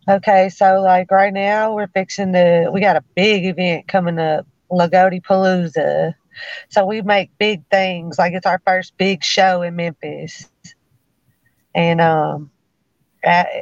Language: English